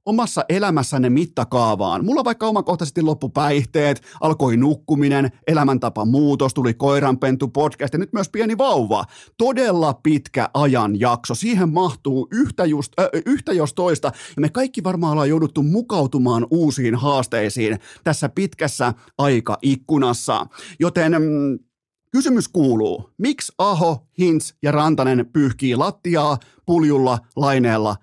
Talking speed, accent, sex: 120 wpm, native, male